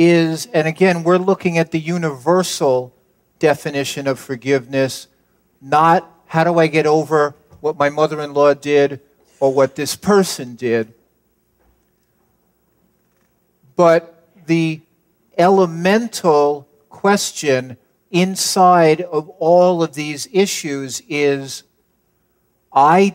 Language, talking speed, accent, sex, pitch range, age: English, 100 wpm, American, male, 135-175 Hz, 50-69